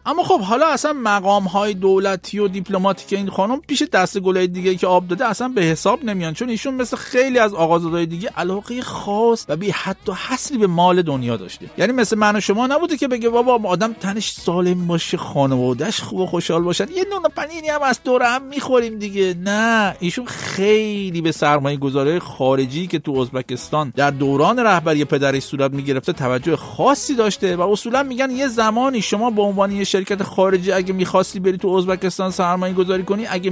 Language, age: Persian, 50-69